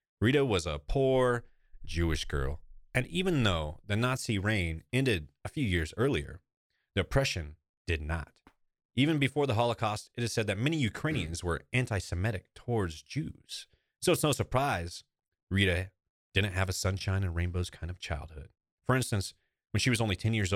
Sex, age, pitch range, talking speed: male, 30-49, 80-110 Hz, 165 wpm